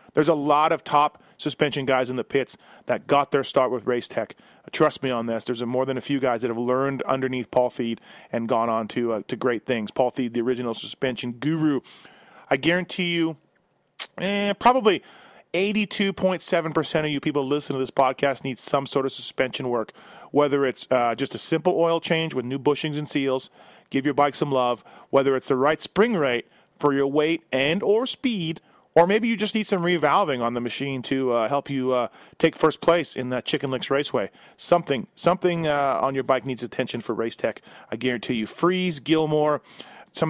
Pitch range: 130-160 Hz